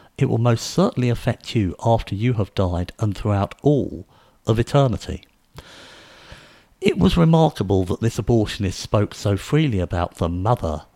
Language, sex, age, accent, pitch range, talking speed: English, male, 50-69, British, 95-125 Hz, 150 wpm